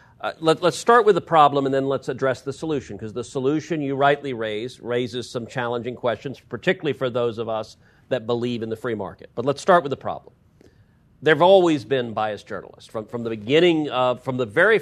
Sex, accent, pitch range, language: male, American, 120-155 Hz, English